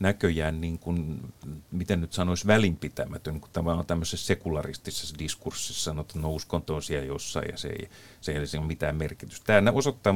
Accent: native